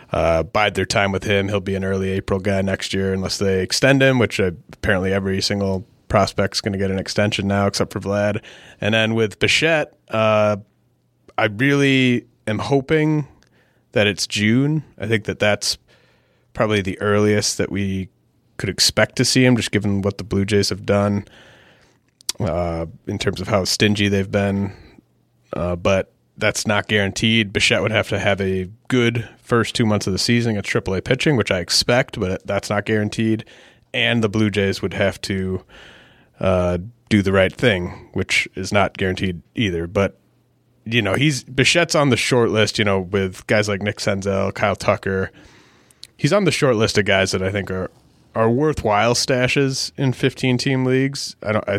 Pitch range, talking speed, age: 95-115 Hz, 185 wpm, 30-49